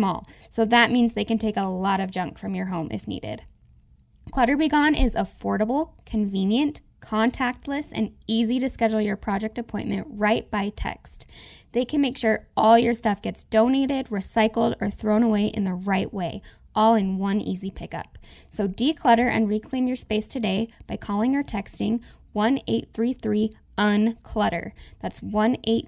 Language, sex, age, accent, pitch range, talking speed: English, female, 10-29, American, 200-240 Hz, 165 wpm